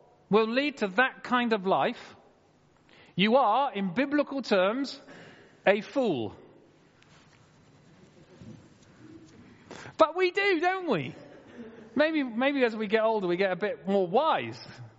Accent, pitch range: British, 185-250 Hz